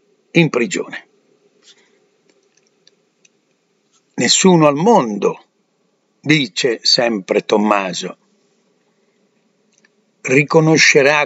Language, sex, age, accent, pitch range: Italian, male, 60-79, native, 130-210 Hz